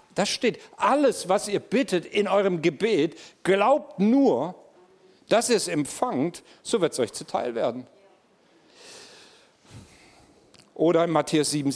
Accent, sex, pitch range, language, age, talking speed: German, male, 180-220 Hz, German, 50-69, 130 wpm